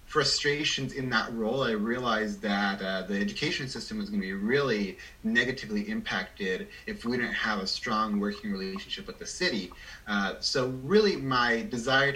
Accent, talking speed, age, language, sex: American, 170 wpm, 30-49, English, male